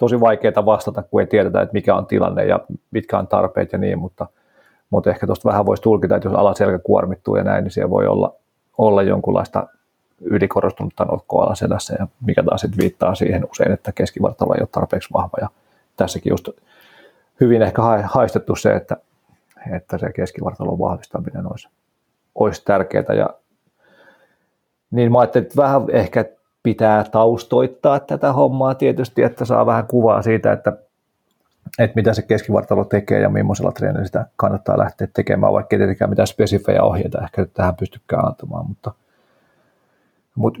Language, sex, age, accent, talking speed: Finnish, male, 40-59, native, 155 wpm